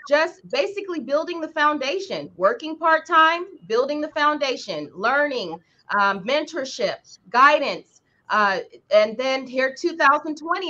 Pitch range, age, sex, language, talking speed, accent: 230-315 Hz, 20-39, female, English, 110 wpm, American